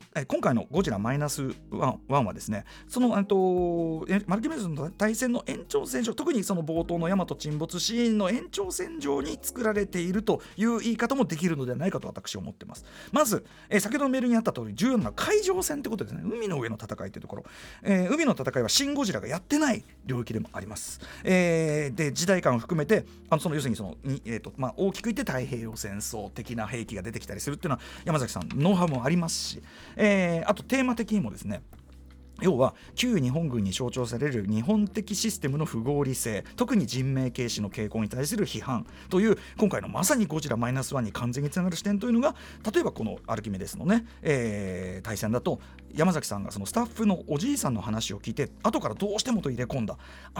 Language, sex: Japanese, male